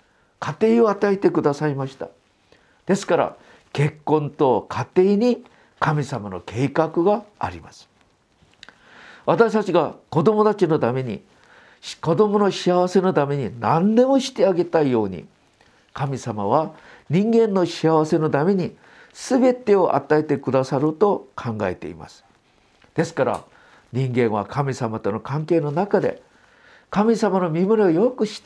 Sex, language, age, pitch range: male, Japanese, 50-69, 135-210 Hz